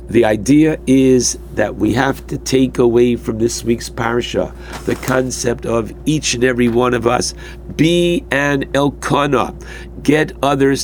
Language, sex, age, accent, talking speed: English, male, 60-79, American, 150 wpm